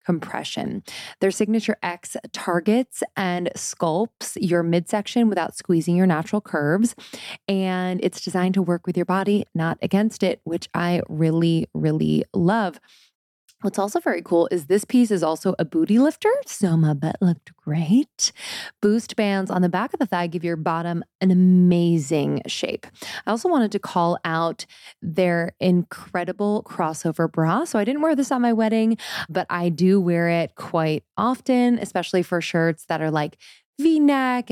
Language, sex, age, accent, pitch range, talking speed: English, female, 20-39, American, 165-220 Hz, 160 wpm